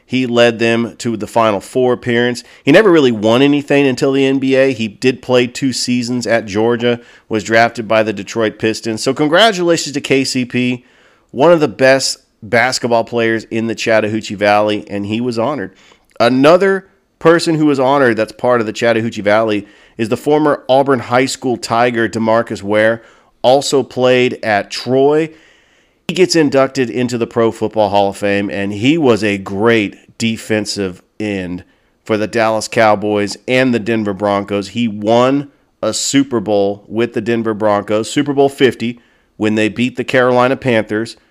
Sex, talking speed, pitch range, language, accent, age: male, 165 wpm, 110-130 Hz, English, American, 40-59